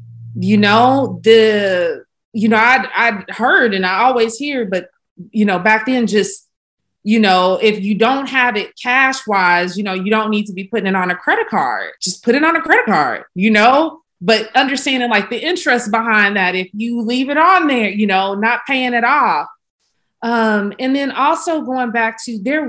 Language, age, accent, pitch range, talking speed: English, 30-49, American, 195-245 Hz, 200 wpm